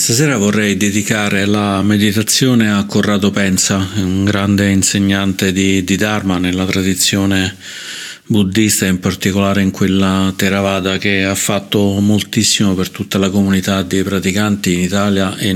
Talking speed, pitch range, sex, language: 135 wpm, 95-100 Hz, male, Italian